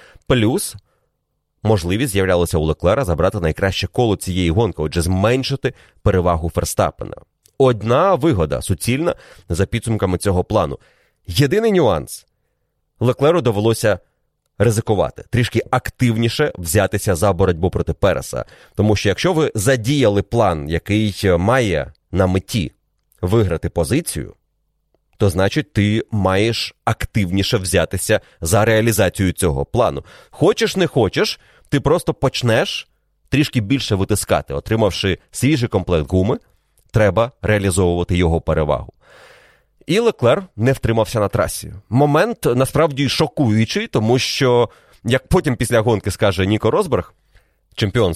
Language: Ukrainian